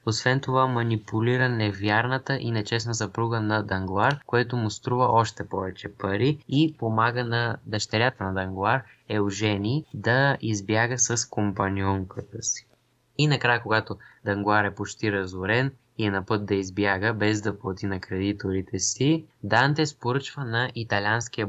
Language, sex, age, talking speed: Bulgarian, male, 20-39, 140 wpm